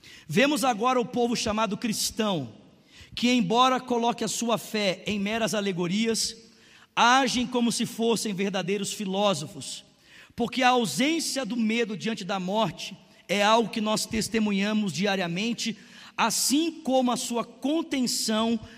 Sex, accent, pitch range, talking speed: male, Brazilian, 210-250 Hz, 130 wpm